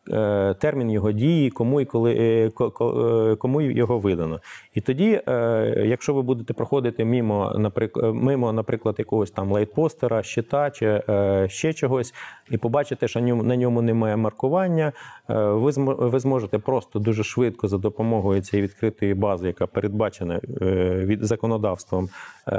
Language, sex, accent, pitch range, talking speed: Ukrainian, male, native, 100-125 Hz, 115 wpm